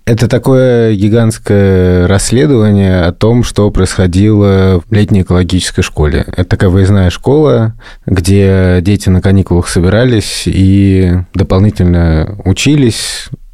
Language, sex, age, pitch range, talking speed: Russian, male, 20-39, 90-105 Hz, 105 wpm